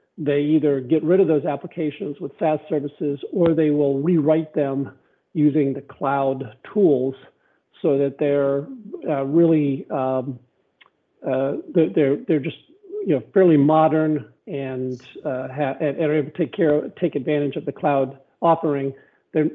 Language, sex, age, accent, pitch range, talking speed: English, male, 50-69, American, 140-165 Hz, 150 wpm